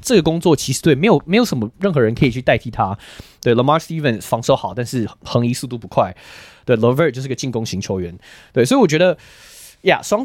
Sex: male